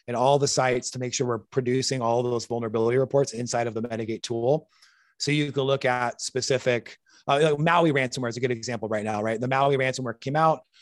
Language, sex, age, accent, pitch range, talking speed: English, male, 30-49, American, 125-150 Hz, 220 wpm